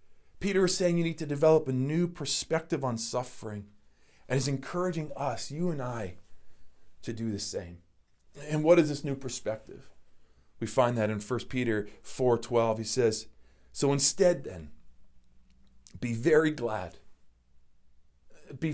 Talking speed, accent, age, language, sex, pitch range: 145 wpm, American, 40-59, English, male, 105-155 Hz